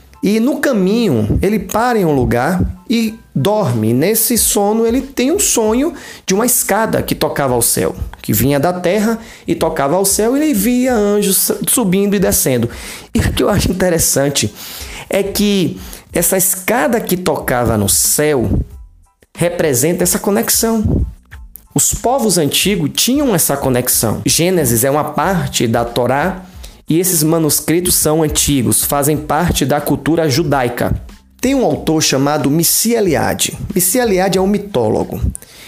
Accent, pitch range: Brazilian, 145-220 Hz